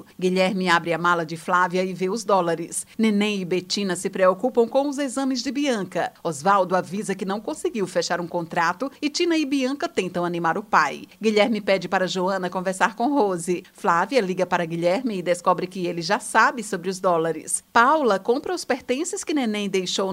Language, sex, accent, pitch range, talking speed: Portuguese, female, Brazilian, 180-245 Hz, 190 wpm